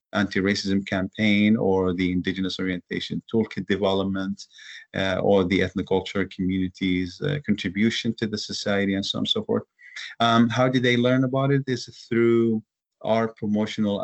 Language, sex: English, male